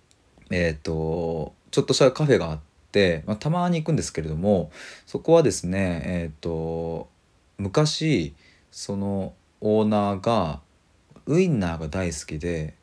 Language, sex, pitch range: Japanese, male, 85-130 Hz